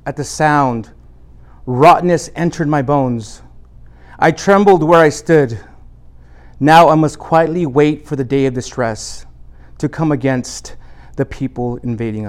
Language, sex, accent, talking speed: English, male, American, 135 wpm